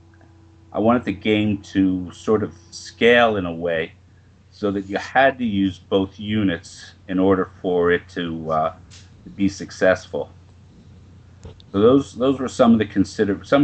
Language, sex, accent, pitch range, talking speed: English, male, American, 90-105 Hz, 165 wpm